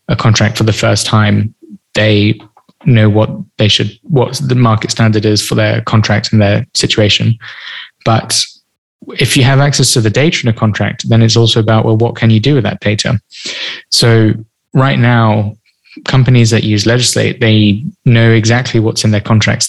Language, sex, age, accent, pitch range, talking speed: English, male, 20-39, British, 105-120 Hz, 175 wpm